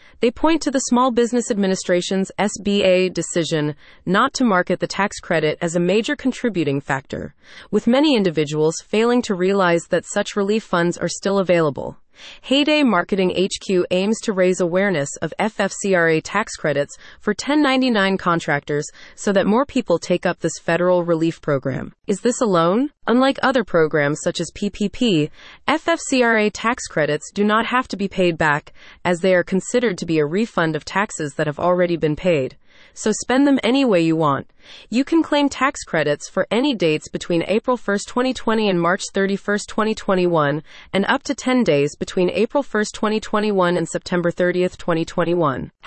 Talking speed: 165 wpm